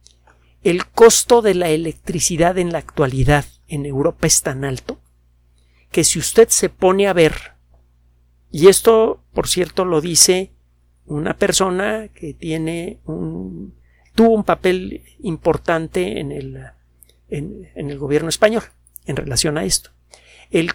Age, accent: 50-69, Mexican